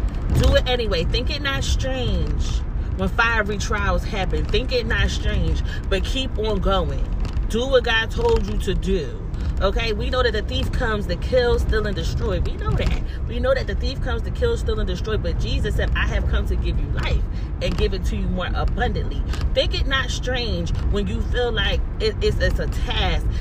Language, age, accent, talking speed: English, 30-49, American, 210 wpm